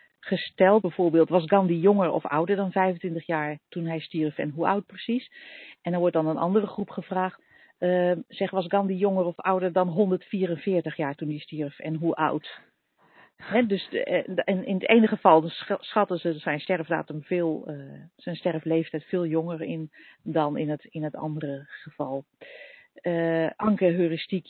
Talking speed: 160 wpm